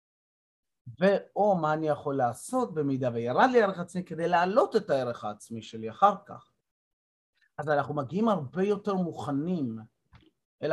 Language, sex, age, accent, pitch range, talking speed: Hebrew, male, 30-49, native, 125-165 Hz, 140 wpm